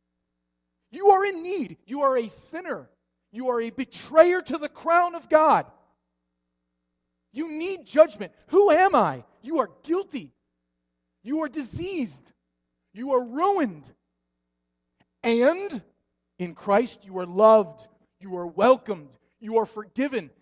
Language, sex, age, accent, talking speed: English, male, 30-49, American, 130 wpm